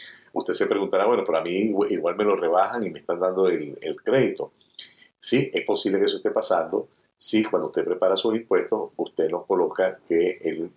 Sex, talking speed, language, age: male, 200 wpm, Spanish, 50-69